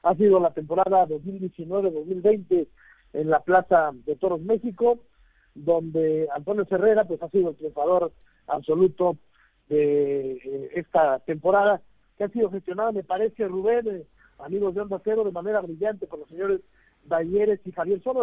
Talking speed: 150 wpm